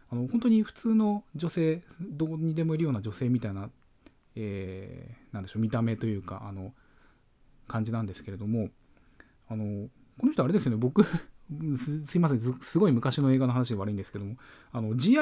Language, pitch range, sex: Japanese, 105-160 Hz, male